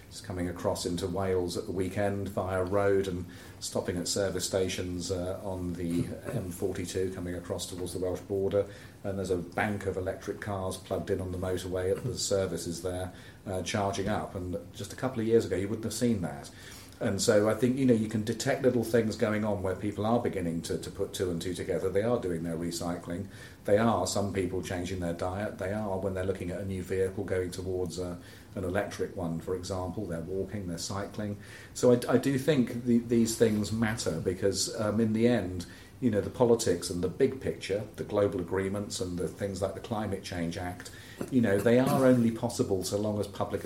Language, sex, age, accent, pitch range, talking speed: English, male, 40-59, British, 90-110 Hz, 210 wpm